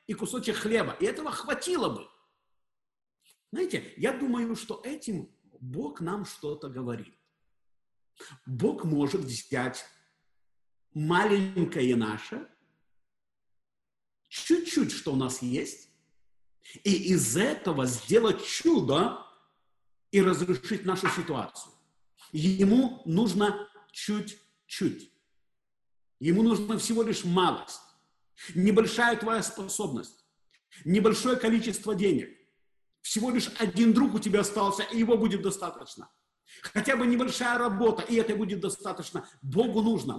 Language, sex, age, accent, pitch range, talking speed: Russian, male, 50-69, native, 180-235 Hz, 105 wpm